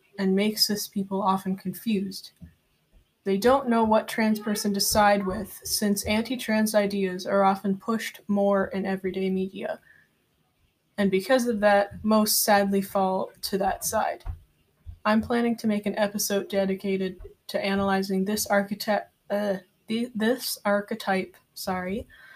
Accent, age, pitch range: American, 20-39, 195-220 Hz